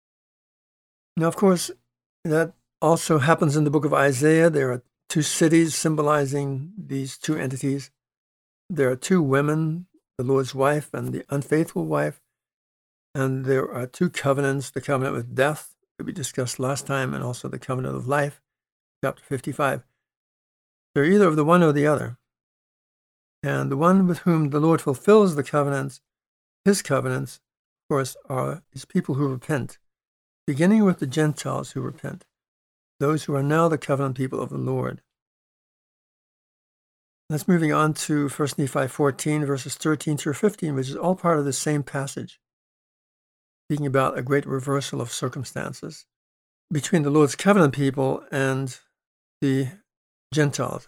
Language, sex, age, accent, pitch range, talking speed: English, male, 60-79, American, 135-155 Hz, 150 wpm